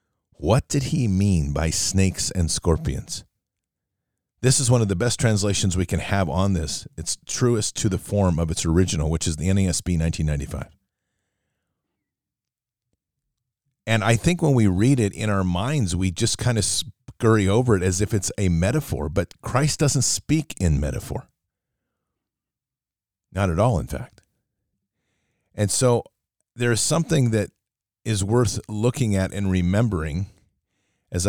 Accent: American